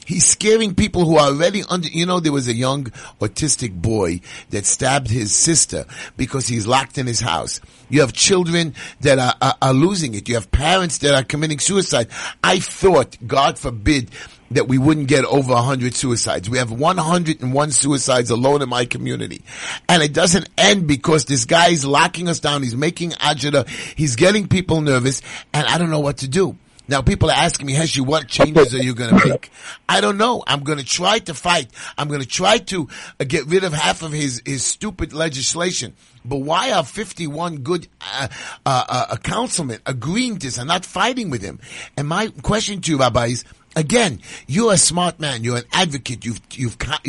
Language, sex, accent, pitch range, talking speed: English, male, American, 130-175 Hz, 200 wpm